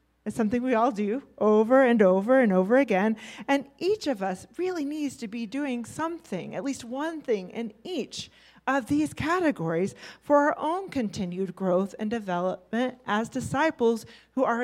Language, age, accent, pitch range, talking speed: English, 40-59, American, 190-260 Hz, 170 wpm